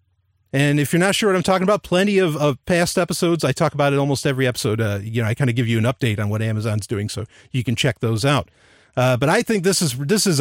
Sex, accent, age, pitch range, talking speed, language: male, American, 40-59, 115-155 Hz, 280 wpm, English